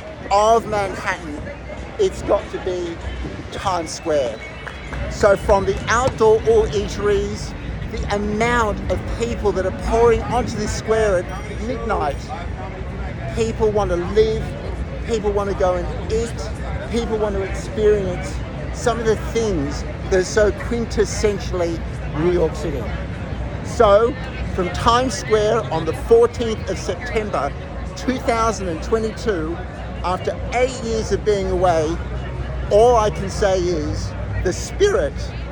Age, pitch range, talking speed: 50-69, 180-230 Hz, 125 wpm